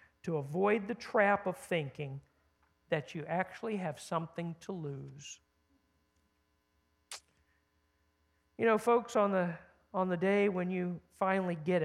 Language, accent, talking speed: English, American, 125 wpm